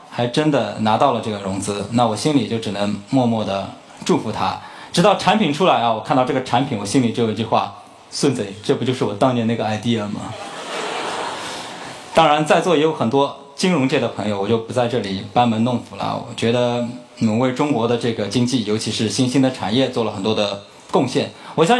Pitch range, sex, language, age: 110-145 Hz, male, Chinese, 20-39